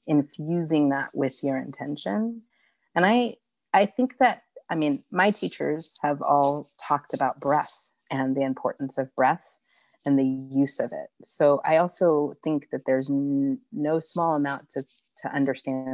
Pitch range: 135-185 Hz